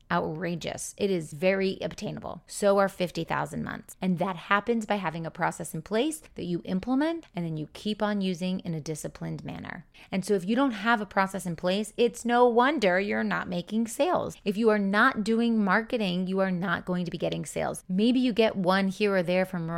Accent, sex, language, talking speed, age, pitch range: American, female, English, 215 wpm, 30-49, 165-210 Hz